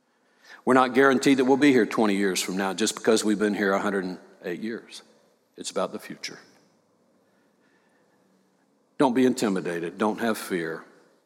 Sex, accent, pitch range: male, American, 105-125 Hz